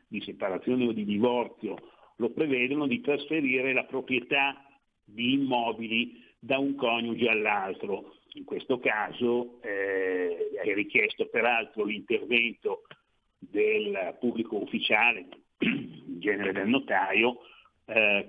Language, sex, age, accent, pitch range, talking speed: Italian, male, 60-79, native, 115-145 Hz, 110 wpm